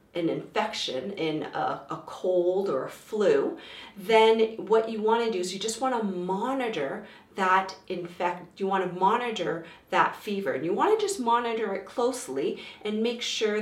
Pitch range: 190-250 Hz